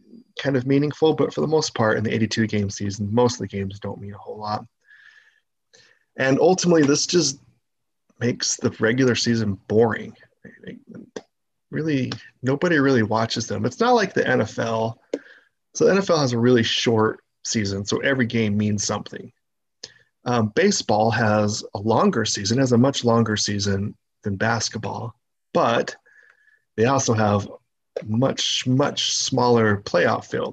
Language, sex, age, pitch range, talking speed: English, male, 30-49, 110-140 Hz, 145 wpm